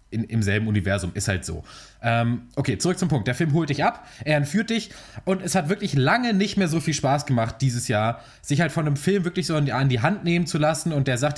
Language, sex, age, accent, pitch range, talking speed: German, male, 20-39, German, 125-155 Hz, 270 wpm